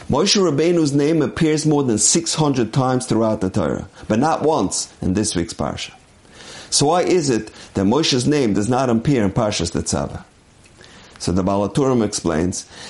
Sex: male